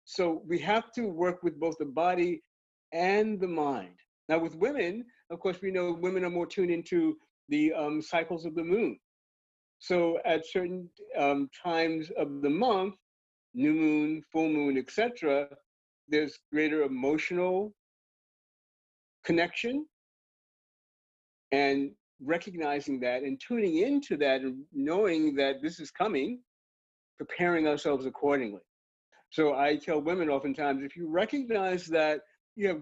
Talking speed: 135 wpm